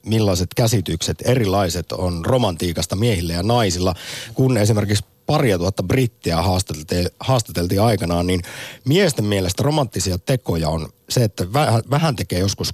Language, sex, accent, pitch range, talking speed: Finnish, male, native, 90-120 Hz, 125 wpm